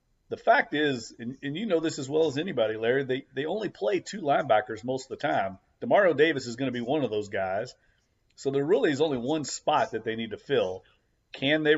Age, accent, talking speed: 40-59, American, 240 wpm